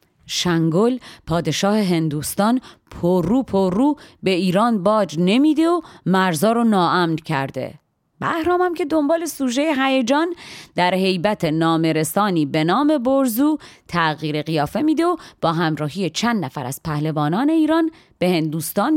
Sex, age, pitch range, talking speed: female, 30-49, 160-235 Hz, 125 wpm